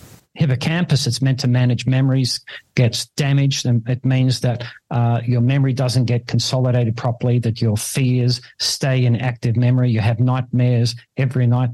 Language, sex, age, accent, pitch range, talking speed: English, male, 50-69, Australian, 120-135 Hz, 160 wpm